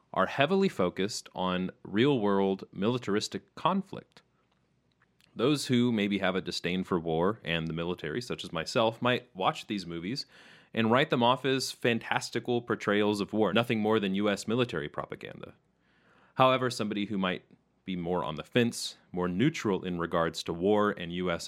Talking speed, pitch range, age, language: 160 wpm, 95-125 Hz, 30-49, English